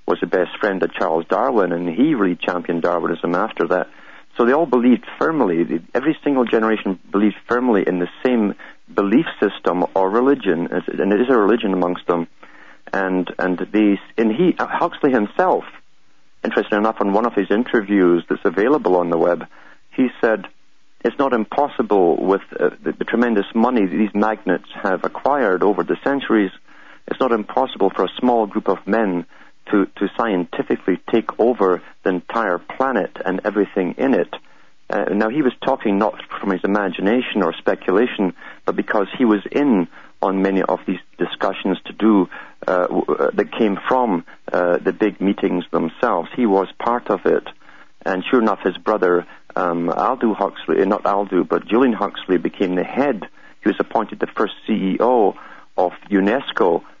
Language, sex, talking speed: English, male, 165 wpm